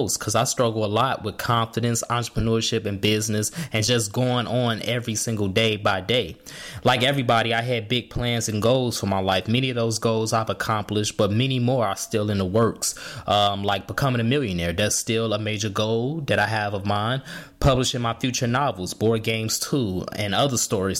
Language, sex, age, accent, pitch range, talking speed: English, male, 20-39, American, 110-130 Hz, 195 wpm